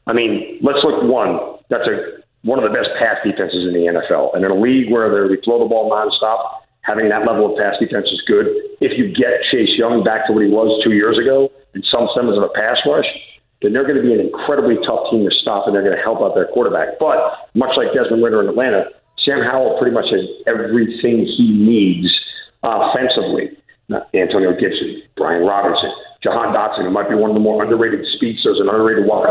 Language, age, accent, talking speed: English, 50-69, American, 225 wpm